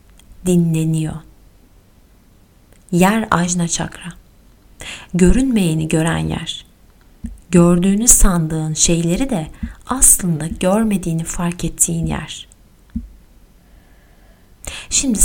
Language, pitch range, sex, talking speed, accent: Turkish, 170-235 Hz, female, 65 wpm, native